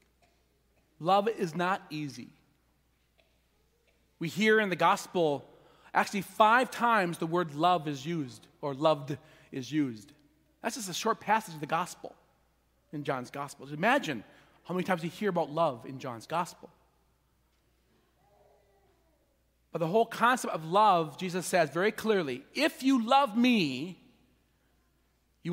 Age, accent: 40-59, American